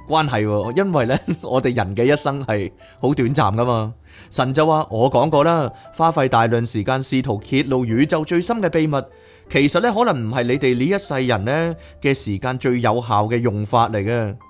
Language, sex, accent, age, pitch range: Chinese, male, native, 30-49, 110-155 Hz